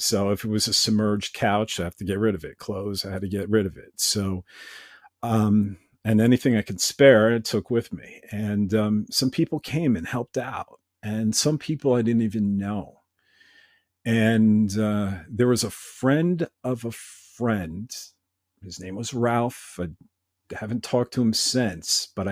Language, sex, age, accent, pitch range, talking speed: English, male, 50-69, American, 100-120 Hz, 185 wpm